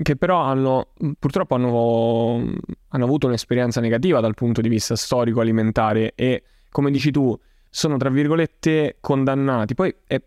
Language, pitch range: Italian, 115-135 Hz